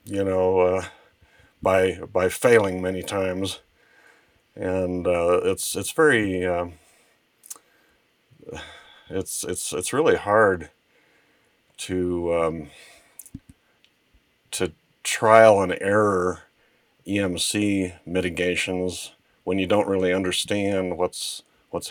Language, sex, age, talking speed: English, male, 50-69, 95 wpm